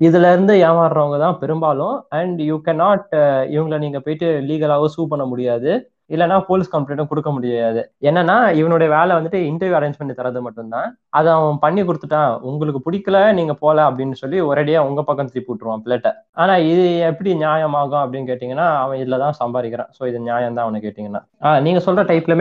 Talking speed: 155 wpm